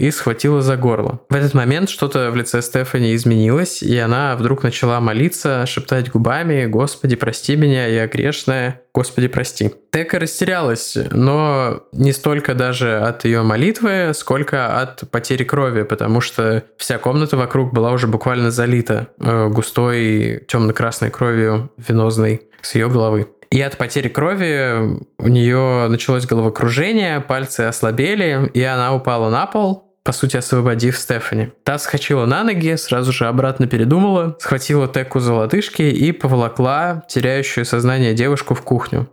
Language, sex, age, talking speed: Russian, male, 20-39, 145 wpm